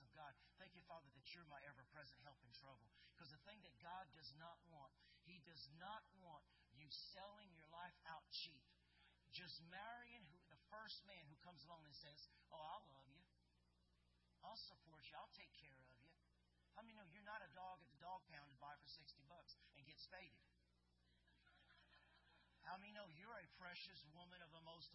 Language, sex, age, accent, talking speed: English, male, 50-69, American, 200 wpm